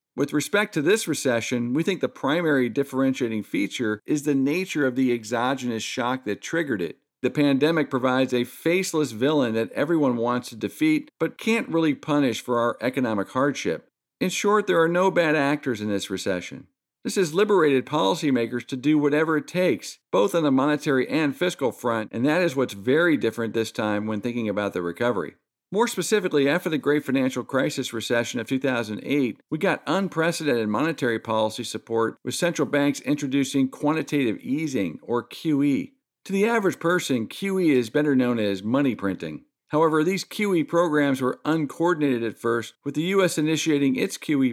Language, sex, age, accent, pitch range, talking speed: English, male, 50-69, American, 120-160 Hz, 170 wpm